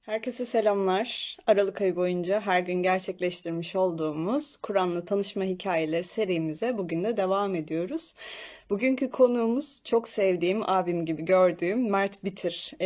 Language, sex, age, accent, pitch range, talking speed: Turkish, female, 30-49, native, 180-215 Hz, 120 wpm